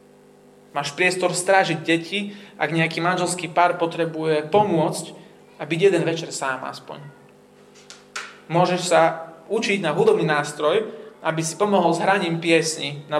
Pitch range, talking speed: 155-195 Hz, 125 wpm